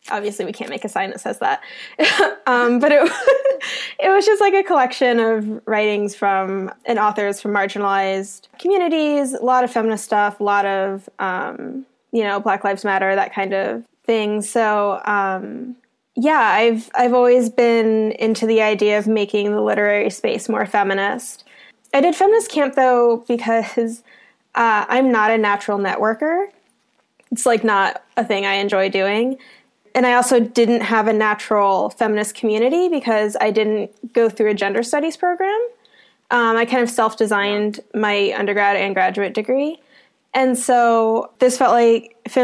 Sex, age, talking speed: female, 10-29, 160 wpm